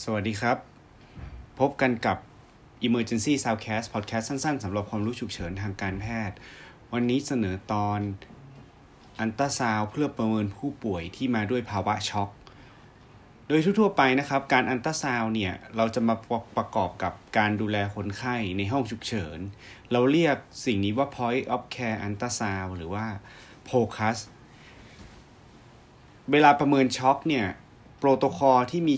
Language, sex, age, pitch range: Thai, male, 30-49, 105-130 Hz